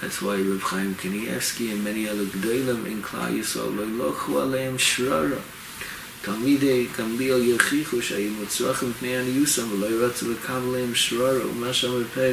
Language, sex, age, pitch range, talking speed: English, male, 30-49, 110-130 Hz, 145 wpm